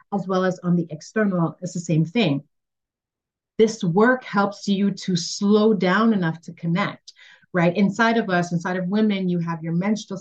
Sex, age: female, 30-49